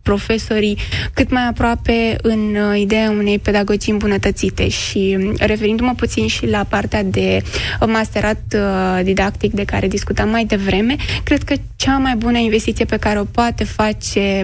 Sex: female